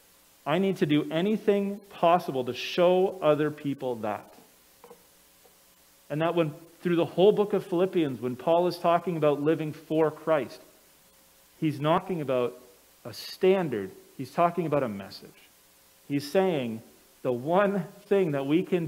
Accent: American